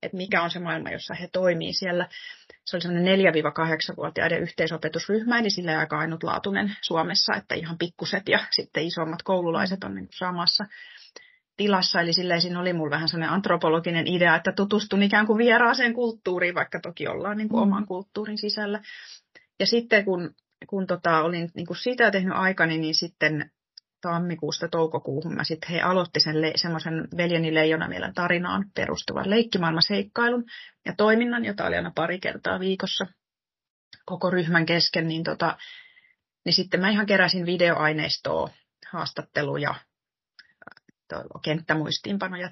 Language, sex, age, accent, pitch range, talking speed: Finnish, female, 30-49, native, 160-200 Hz, 140 wpm